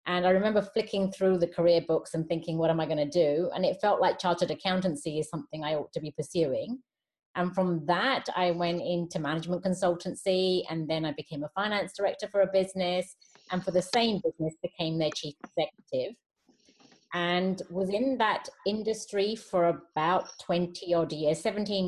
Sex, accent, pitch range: female, British, 175-205 Hz